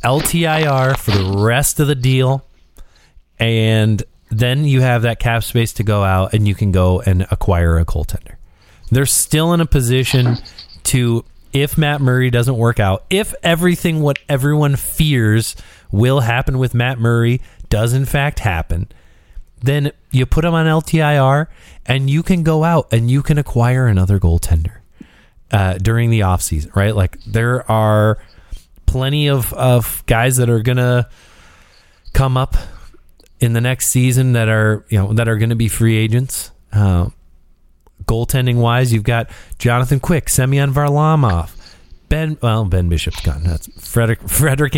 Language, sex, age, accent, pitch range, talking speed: English, male, 30-49, American, 95-135 Hz, 155 wpm